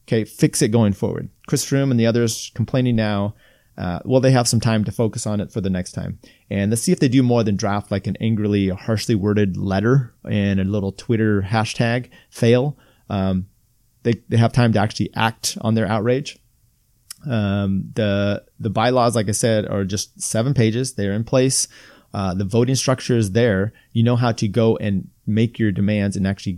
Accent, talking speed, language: American, 205 wpm, English